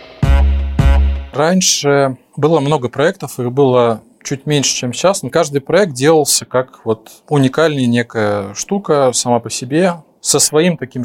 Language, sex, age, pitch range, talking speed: Russian, male, 20-39, 120-150 Hz, 135 wpm